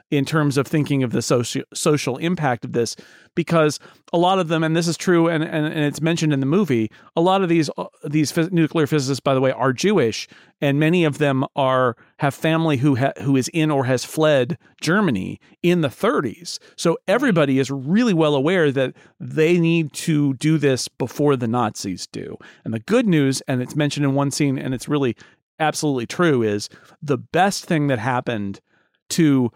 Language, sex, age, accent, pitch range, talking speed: English, male, 40-59, American, 130-160 Hz, 200 wpm